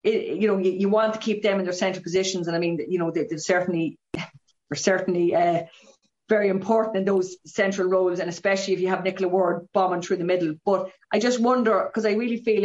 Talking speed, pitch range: 230 wpm, 175-195 Hz